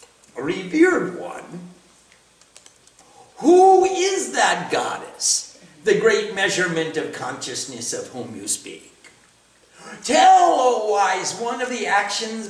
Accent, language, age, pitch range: American, English, 50-69, 195-305 Hz